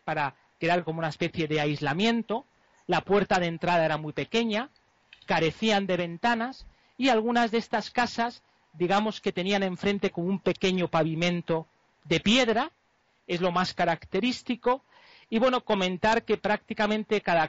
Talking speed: 145 wpm